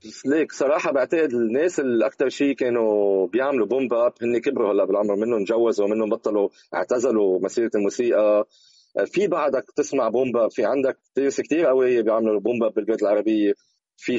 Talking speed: 145 wpm